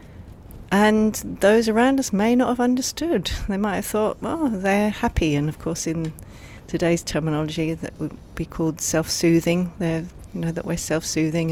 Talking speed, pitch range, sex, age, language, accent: 160 wpm, 145-185 Hz, female, 40-59, English, British